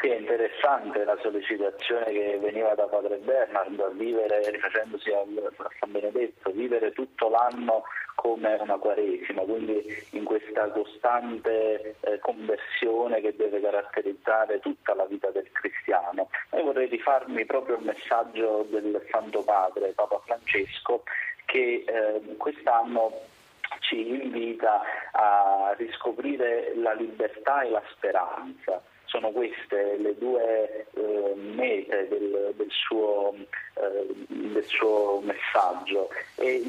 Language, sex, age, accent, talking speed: Italian, male, 30-49, native, 120 wpm